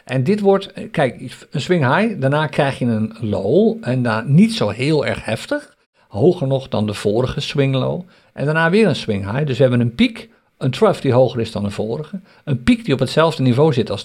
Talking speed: 225 wpm